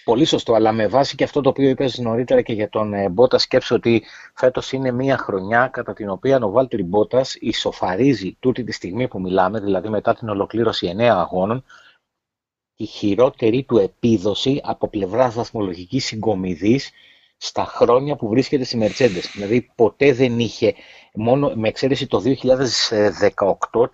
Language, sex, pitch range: Greek, male, 105-135 Hz